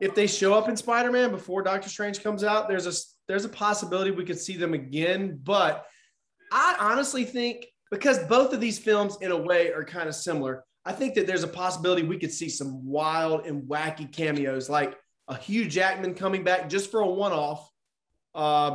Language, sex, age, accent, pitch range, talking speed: English, male, 20-39, American, 155-205 Hz, 200 wpm